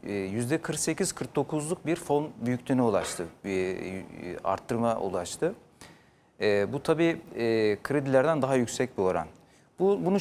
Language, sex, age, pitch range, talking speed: Turkish, male, 40-59, 115-160 Hz, 110 wpm